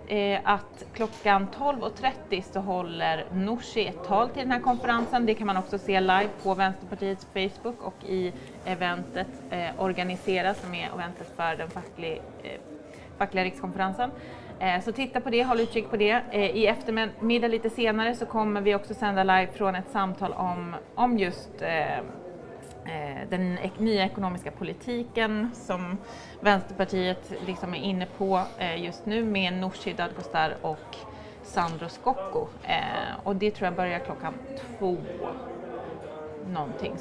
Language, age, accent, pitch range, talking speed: Swedish, 30-49, native, 185-225 Hz, 140 wpm